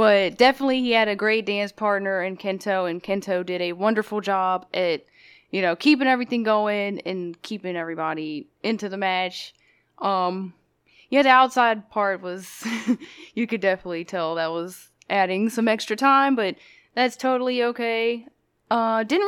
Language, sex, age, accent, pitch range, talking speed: English, female, 20-39, American, 185-235 Hz, 155 wpm